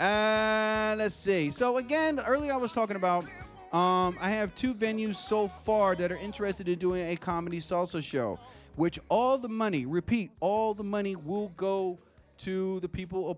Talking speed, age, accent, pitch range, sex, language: 180 wpm, 30-49, American, 150-210 Hz, male, English